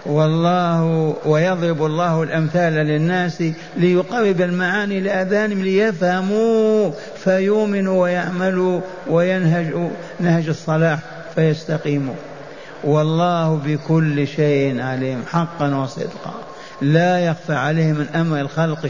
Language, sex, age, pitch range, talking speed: Arabic, male, 50-69, 155-180 Hz, 85 wpm